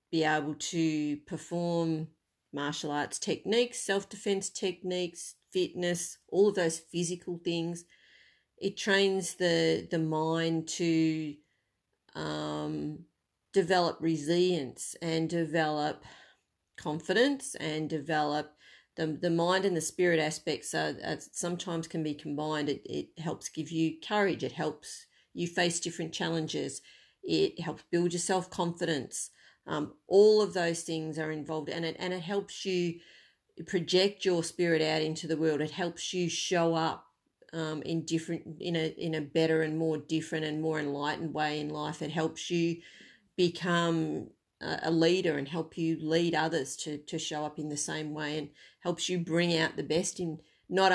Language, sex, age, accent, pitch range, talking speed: English, female, 40-59, Australian, 155-180 Hz, 150 wpm